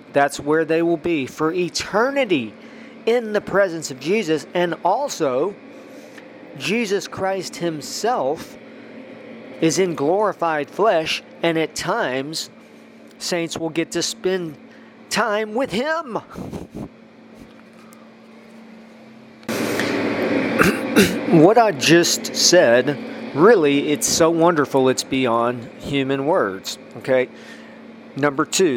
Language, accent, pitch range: English, American, 125-170 Hz